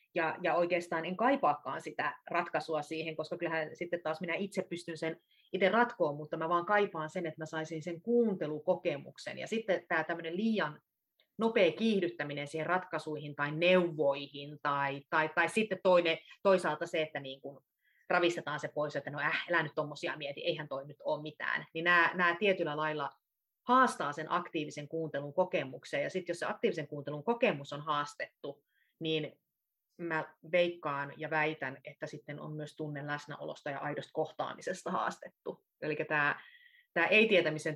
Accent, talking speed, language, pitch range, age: native, 160 wpm, Finnish, 145-175 Hz, 30-49